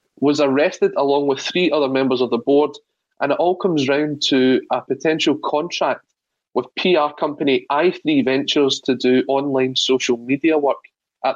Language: English